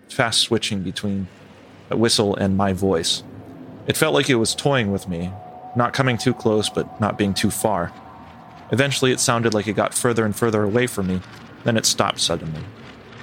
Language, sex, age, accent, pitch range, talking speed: English, male, 30-49, American, 100-120 Hz, 185 wpm